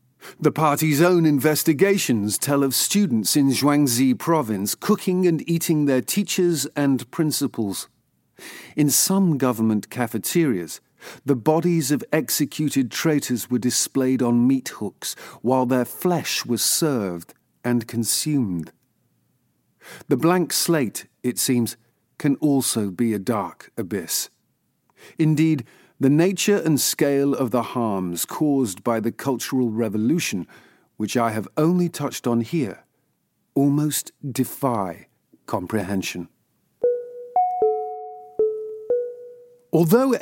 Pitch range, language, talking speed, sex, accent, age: 120-165 Hz, English, 110 wpm, male, British, 50-69